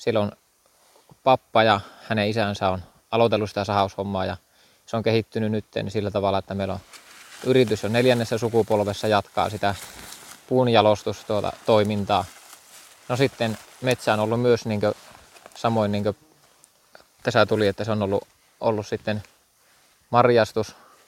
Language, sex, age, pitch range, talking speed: Finnish, male, 20-39, 100-115 Hz, 130 wpm